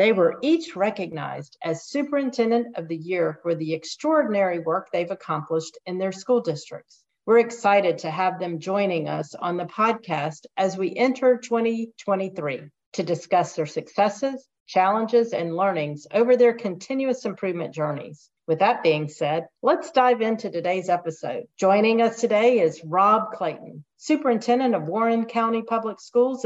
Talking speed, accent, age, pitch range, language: 150 wpm, American, 40-59, 175-235 Hz, English